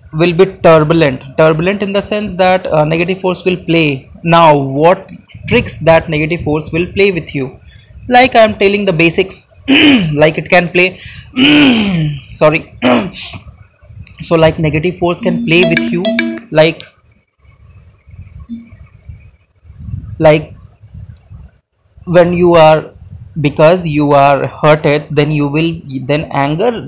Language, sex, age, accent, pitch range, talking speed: English, male, 30-49, Indian, 140-170 Hz, 125 wpm